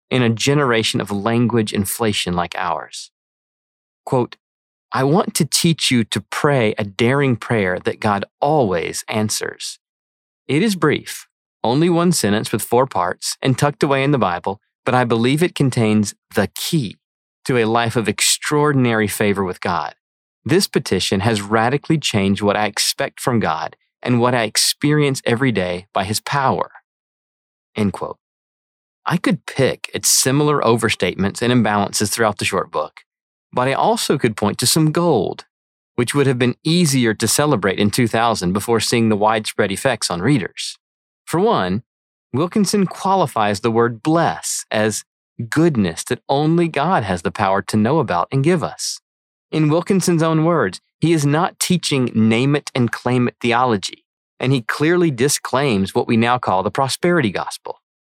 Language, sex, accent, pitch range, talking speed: English, male, American, 105-145 Hz, 155 wpm